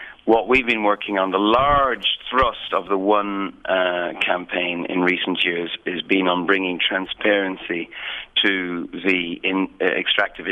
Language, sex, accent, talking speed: English, male, British, 155 wpm